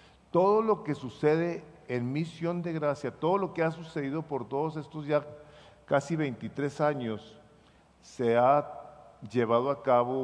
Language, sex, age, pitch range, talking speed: English, male, 50-69, 130-165 Hz, 145 wpm